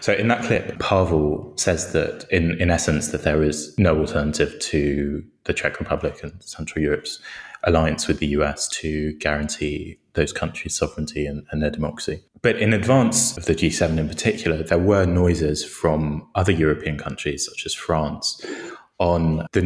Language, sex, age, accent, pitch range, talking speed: English, male, 20-39, British, 75-85 Hz, 170 wpm